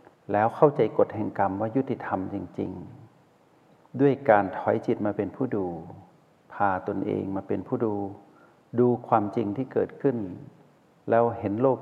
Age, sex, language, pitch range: 60-79, male, Thai, 100-120 Hz